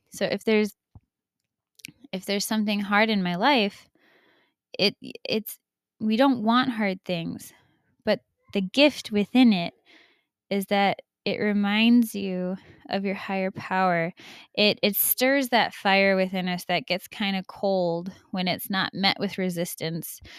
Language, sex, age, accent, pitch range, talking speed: English, female, 10-29, American, 185-220 Hz, 145 wpm